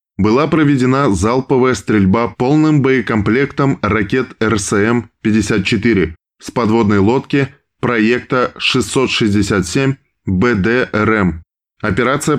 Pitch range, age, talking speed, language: 105-130 Hz, 20-39, 75 wpm, Russian